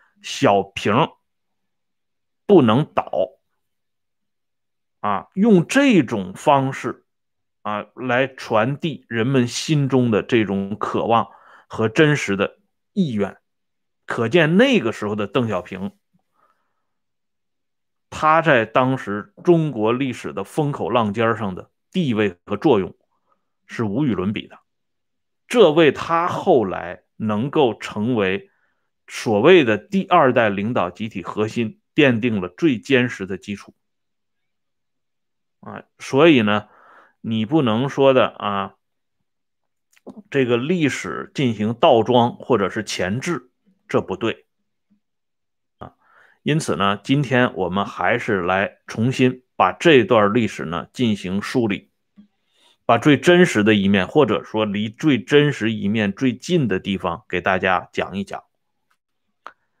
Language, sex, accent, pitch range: Swedish, male, Chinese, 105-155 Hz